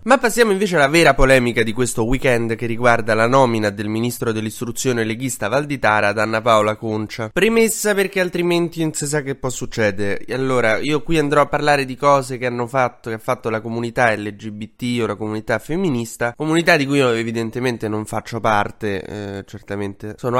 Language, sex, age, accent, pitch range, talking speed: Italian, male, 20-39, native, 110-135 Hz, 190 wpm